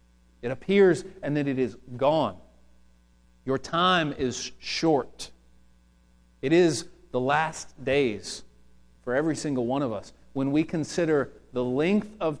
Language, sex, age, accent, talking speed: English, male, 40-59, American, 135 wpm